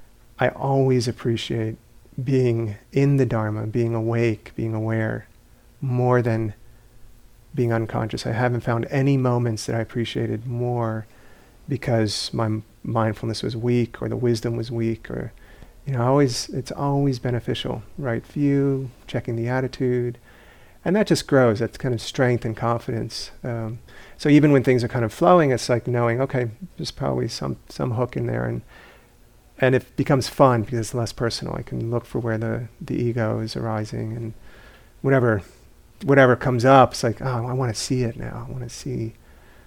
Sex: male